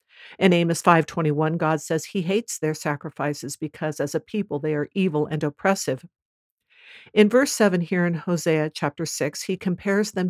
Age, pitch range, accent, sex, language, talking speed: 60-79, 155-190 Hz, American, female, English, 170 wpm